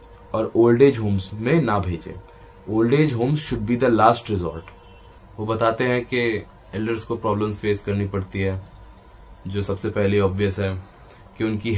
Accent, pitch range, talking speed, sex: native, 100-125 Hz, 165 wpm, male